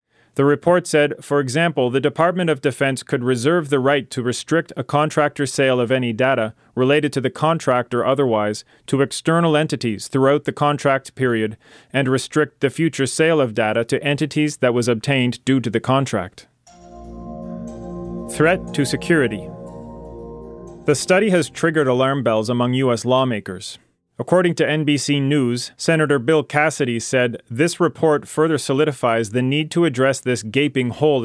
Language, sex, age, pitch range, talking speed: English, male, 40-59, 125-150 Hz, 155 wpm